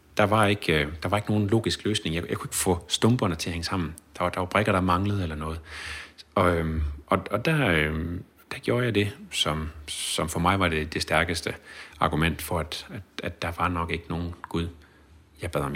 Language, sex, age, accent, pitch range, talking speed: Danish, male, 30-49, native, 75-100 Hz, 215 wpm